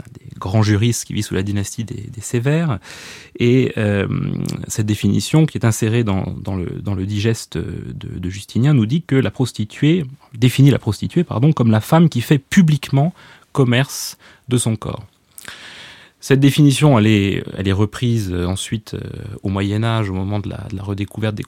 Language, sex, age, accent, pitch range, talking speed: French, male, 30-49, French, 100-135 Hz, 180 wpm